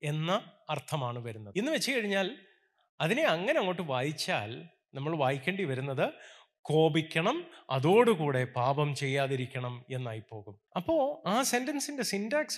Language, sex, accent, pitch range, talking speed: Malayalam, male, native, 130-185 Hz, 105 wpm